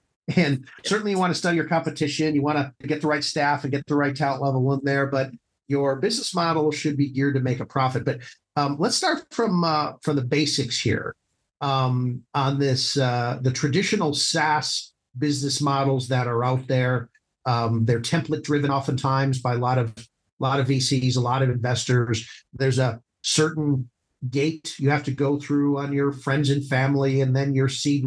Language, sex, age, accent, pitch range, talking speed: English, male, 50-69, American, 130-150 Hz, 195 wpm